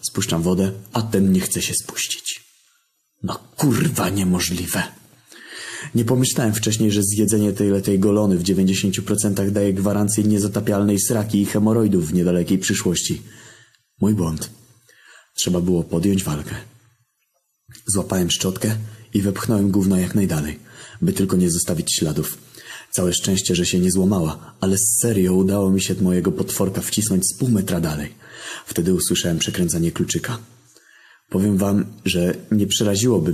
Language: Polish